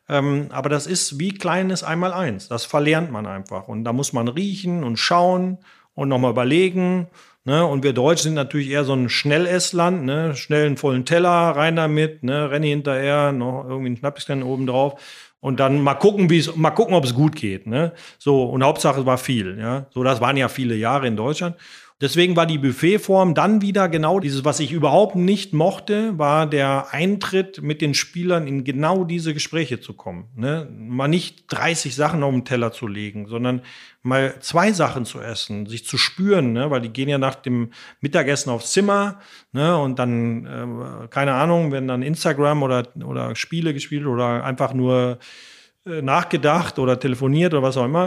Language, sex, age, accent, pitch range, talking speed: German, male, 40-59, German, 125-170 Hz, 190 wpm